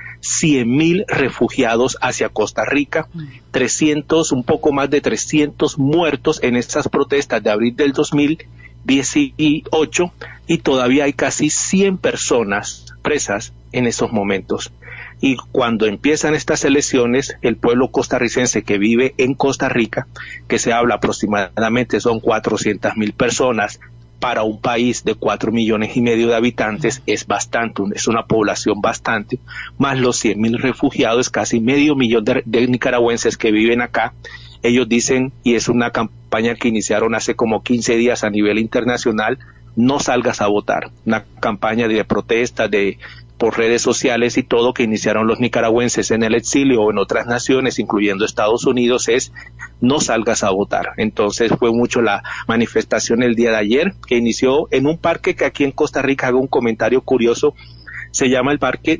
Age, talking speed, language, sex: 50-69, 160 wpm, Spanish, male